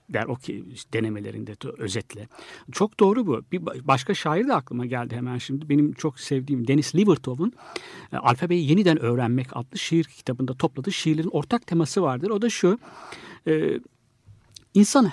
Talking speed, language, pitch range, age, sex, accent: 150 wpm, Turkish, 130-205 Hz, 60-79, male, native